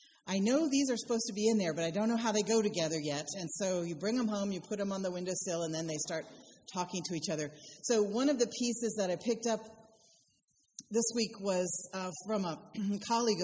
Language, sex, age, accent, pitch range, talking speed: English, female, 40-59, American, 155-215 Hz, 235 wpm